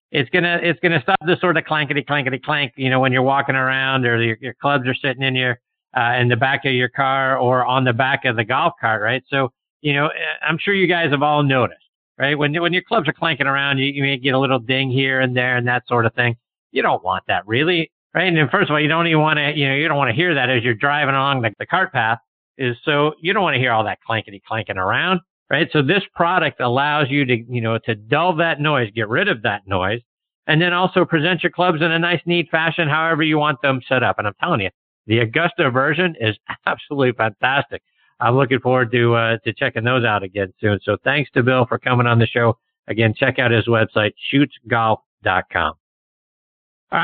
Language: English